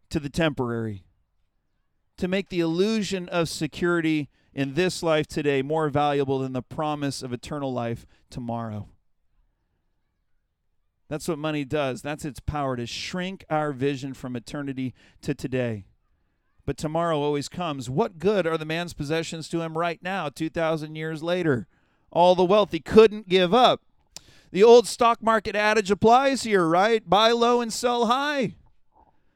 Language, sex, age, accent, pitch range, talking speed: English, male, 40-59, American, 130-195 Hz, 150 wpm